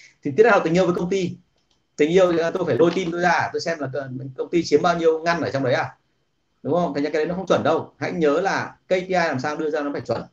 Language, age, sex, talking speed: Vietnamese, 30-49, male, 295 wpm